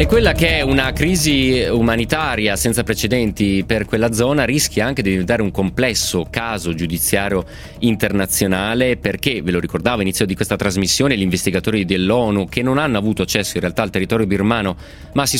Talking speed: 170 wpm